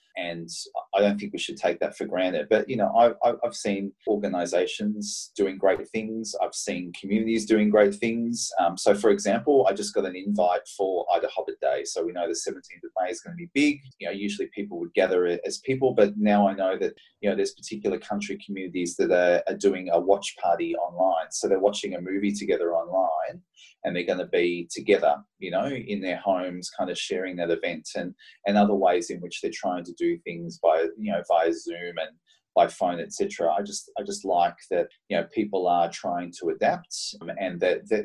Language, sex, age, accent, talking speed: English, male, 30-49, Australian, 220 wpm